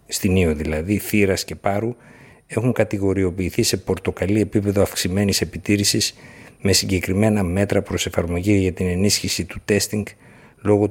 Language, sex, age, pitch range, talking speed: Greek, male, 60-79, 90-105 Hz, 130 wpm